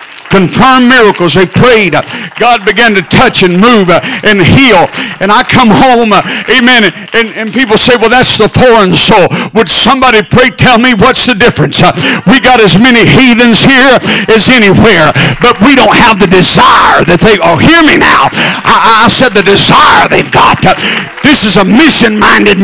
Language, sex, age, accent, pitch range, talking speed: English, male, 60-79, American, 210-260 Hz, 170 wpm